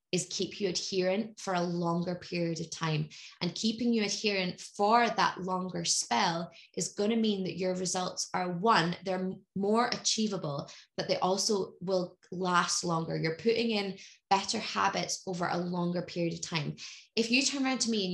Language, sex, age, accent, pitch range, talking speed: English, female, 20-39, British, 170-205 Hz, 175 wpm